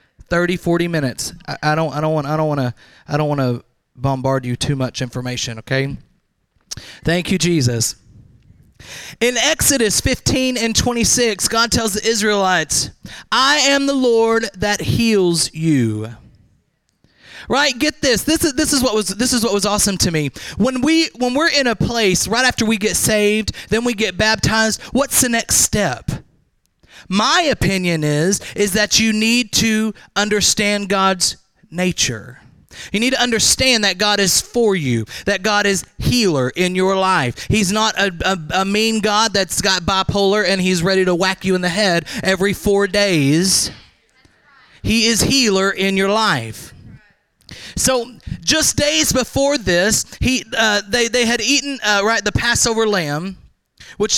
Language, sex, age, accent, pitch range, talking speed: English, male, 30-49, American, 160-225 Hz, 165 wpm